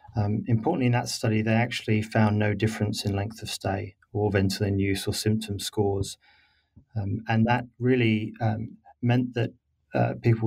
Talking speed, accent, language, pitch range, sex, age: 165 wpm, British, English, 100-110 Hz, male, 30-49